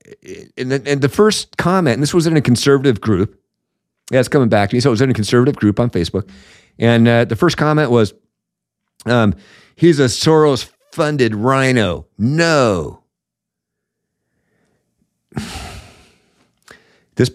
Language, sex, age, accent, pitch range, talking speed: English, male, 50-69, American, 105-135 Hz, 140 wpm